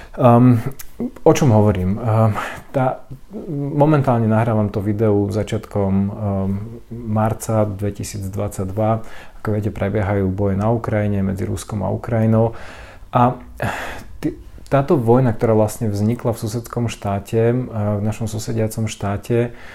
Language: Slovak